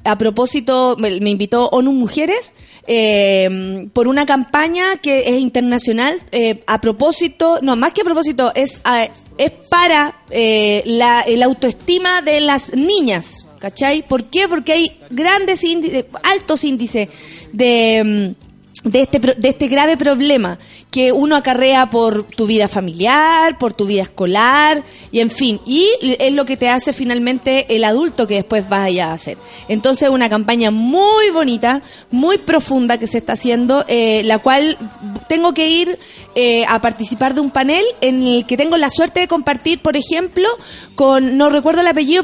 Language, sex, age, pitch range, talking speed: Spanish, female, 30-49, 230-305 Hz, 165 wpm